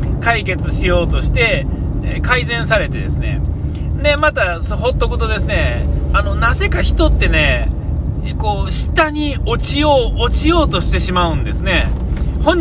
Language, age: Japanese, 40-59